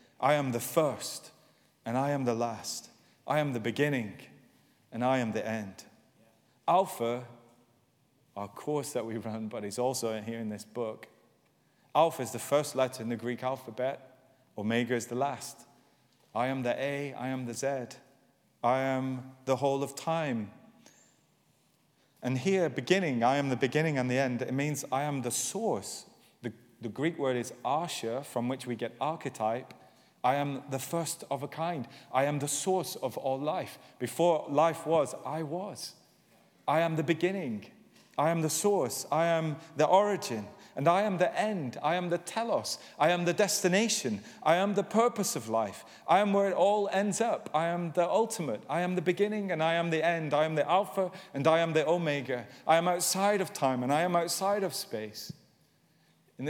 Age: 30-49